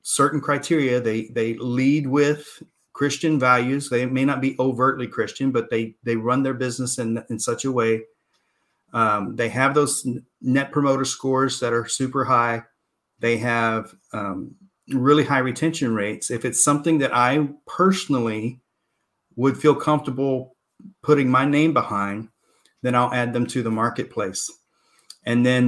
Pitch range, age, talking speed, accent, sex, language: 115-140 Hz, 40-59, 150 wpm, American, male, English